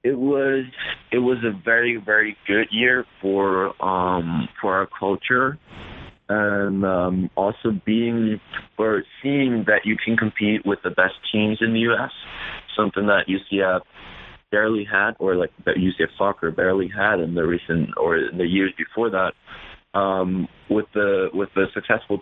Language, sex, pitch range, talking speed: English, male, 90-110 Hz, 155 wpm